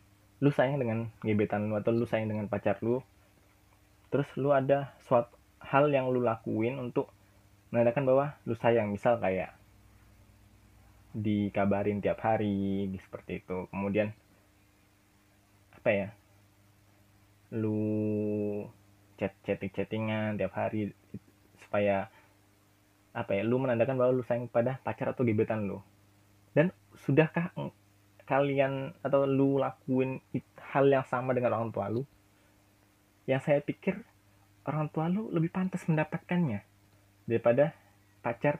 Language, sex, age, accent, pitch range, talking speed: Indonesian, male, 20-39, native, 100-120 Hz, 120 wpm